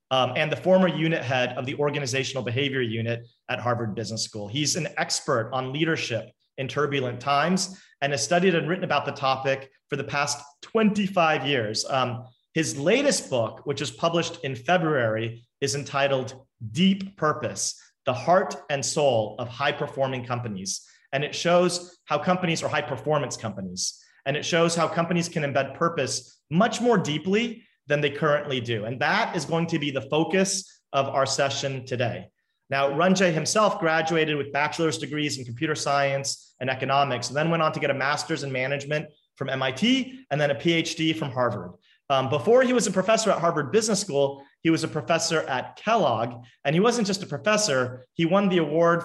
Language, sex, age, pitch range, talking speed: English, male, 40-59, 135-170 Hz, 180 wpm